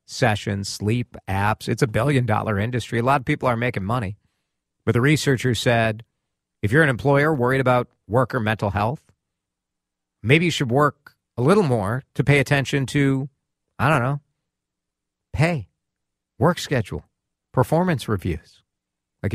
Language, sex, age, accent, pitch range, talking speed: English, male, 50-69, American, 105-145 Hz, 150 wpm